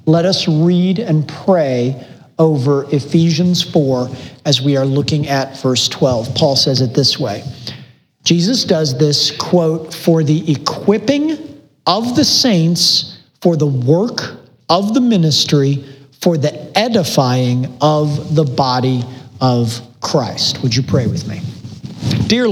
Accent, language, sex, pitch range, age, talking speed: American, English, male, 130-165 Hz, 40-59, 135 wpm